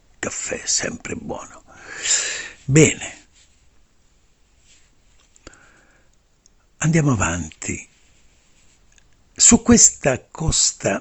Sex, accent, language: male, native, Italian